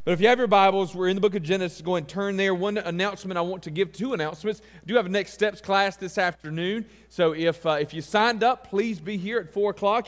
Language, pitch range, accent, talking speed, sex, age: English, 170-210 Hz, American, 280 wpm, male, 40-59